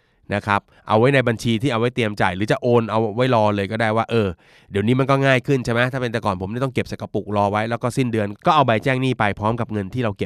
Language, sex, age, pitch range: Thai, male, 20-39, 100-125 Hz